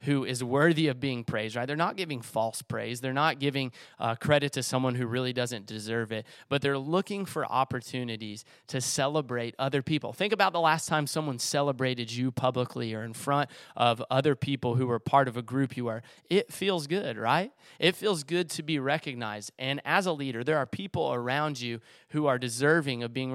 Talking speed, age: 205 wpm, 30-49